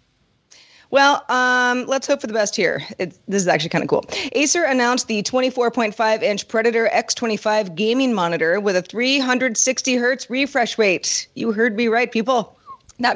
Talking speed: 160 wpm